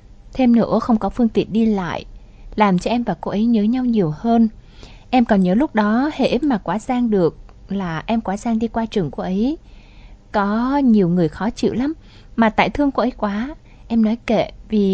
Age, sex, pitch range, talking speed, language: 20-39, female, 190-240 Hz, 215 wpm, Vietnamese